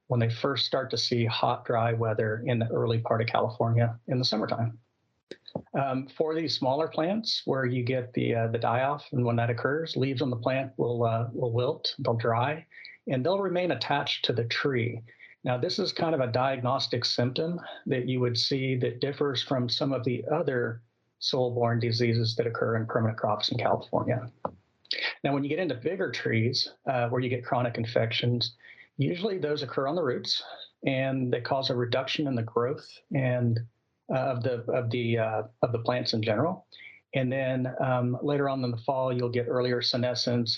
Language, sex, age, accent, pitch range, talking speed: English, male, 40-59, American, 115-135 Hz, 190 wpm